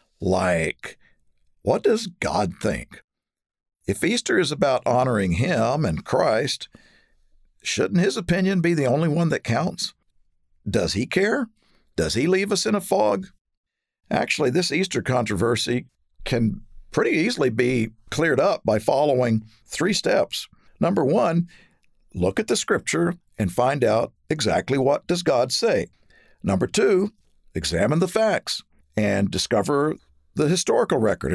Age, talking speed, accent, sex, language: 50-69, 135 wpm, American, male, English